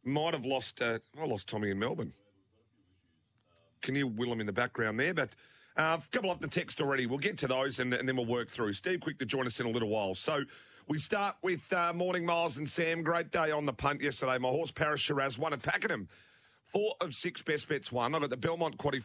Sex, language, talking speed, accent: male, English, 250 wpm, Australian